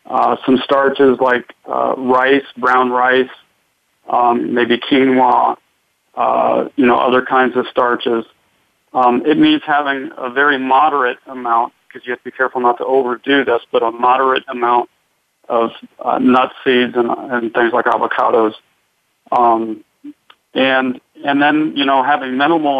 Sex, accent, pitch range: male, American, 125-140 Hz